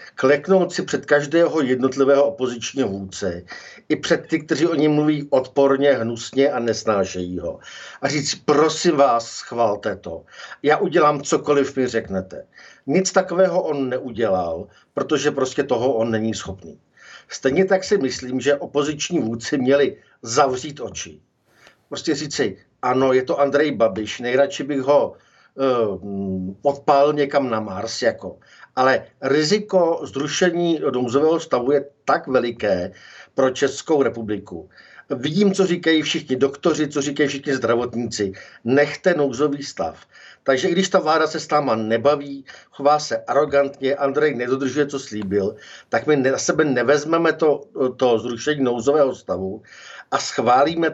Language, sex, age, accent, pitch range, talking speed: Czech, male, 50-69, native, 125-155 Hz, 140 wpm